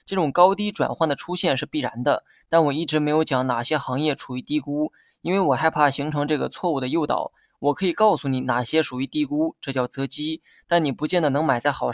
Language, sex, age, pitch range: Chinese, male, 20-39, 135-170 Hz